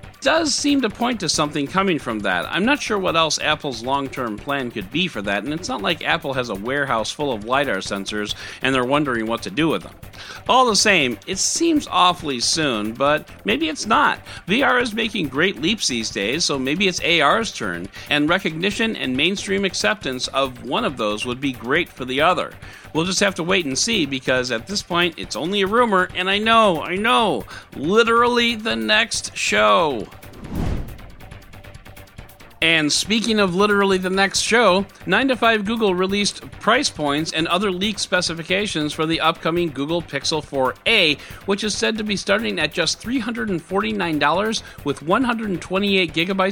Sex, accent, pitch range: male, American, 130-205 Hz